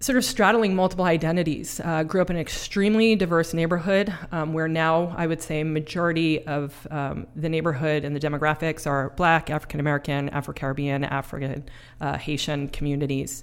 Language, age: English, 30-49